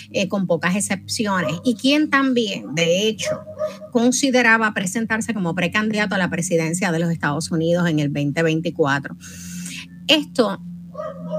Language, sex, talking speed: Spanish, female, 125 wpm